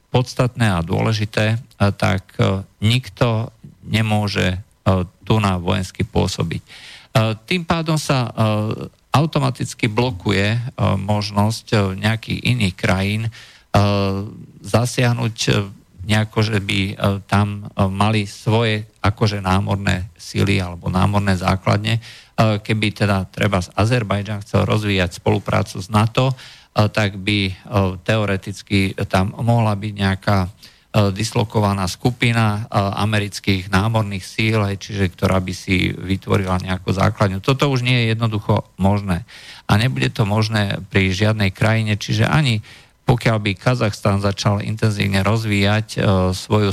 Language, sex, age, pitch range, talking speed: Slovak, male, 50-69, 95-110 Hz, 105 wpm